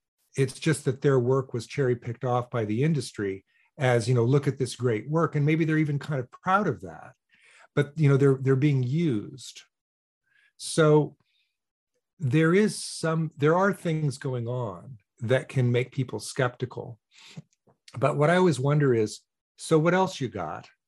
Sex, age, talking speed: male, 50-69, 175 wpm